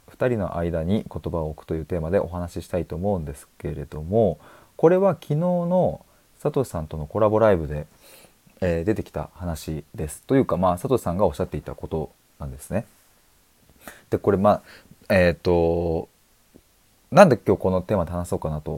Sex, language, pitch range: male, Japanese, 80-120 Hz